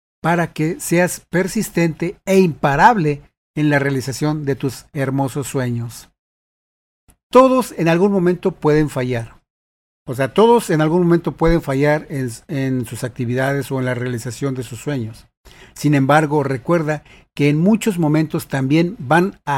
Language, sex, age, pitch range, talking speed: Spanish, male, 50-69, 130-160 Hz, 145 wpm